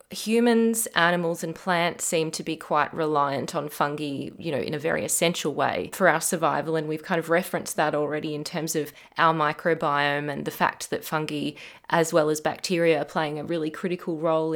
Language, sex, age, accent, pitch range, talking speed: English, female, 20-39, Australian, 155-185 Hz, 200 wpm